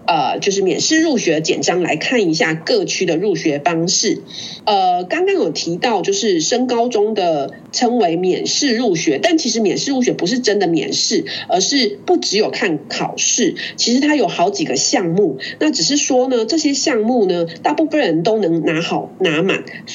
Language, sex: Chinese, female